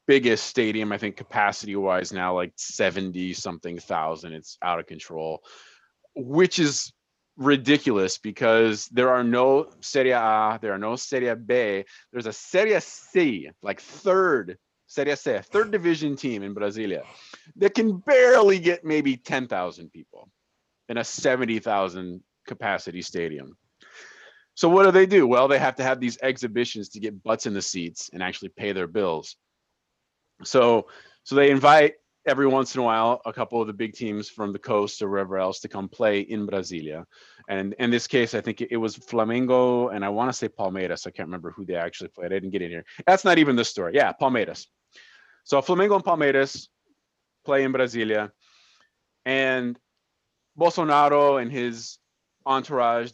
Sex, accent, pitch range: male, American, 100-140 Hz